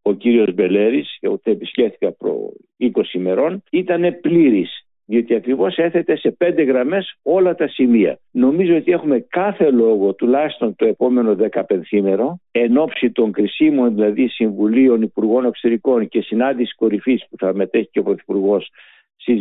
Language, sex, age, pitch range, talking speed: Greek, male, 60-79, 115-155 Hz, 150 wpm